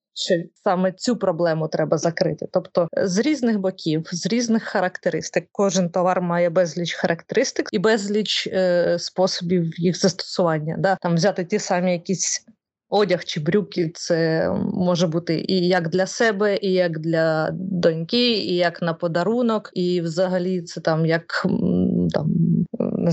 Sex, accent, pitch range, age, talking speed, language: female, native, 175-225 Hz, 20-39, 145 wpm, Ukrainian